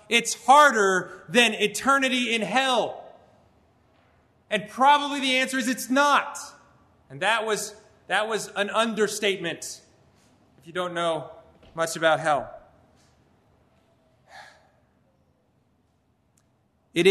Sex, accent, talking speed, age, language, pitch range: male, American, 100 wpm, 30-49, English, 180-235 Hz